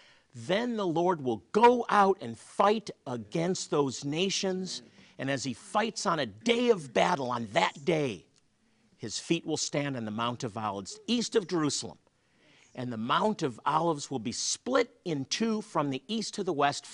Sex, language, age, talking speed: male, English, 50-69, 180 wpm